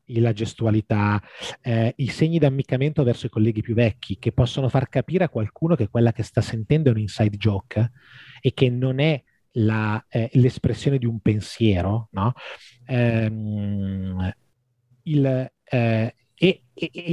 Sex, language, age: male, Italian, 30-49